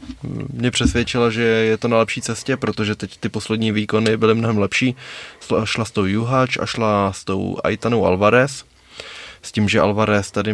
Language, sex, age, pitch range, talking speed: Czech, male, 20-39, 100-115 Hz, 180 wpm